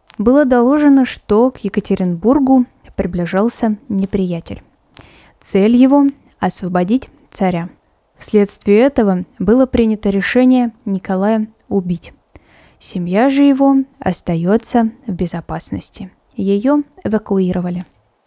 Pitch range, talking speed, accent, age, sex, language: 190-250 Hz, 85 wpm, native, 20-39, female, Russian